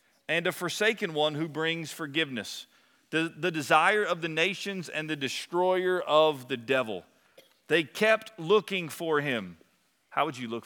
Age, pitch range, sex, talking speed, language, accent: 40-59, 150-195 Hz, male, 160 wpm, English, American